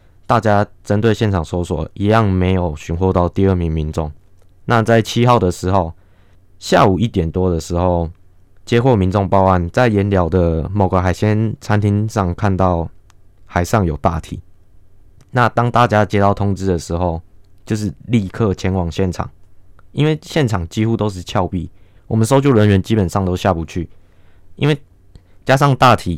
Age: 20-39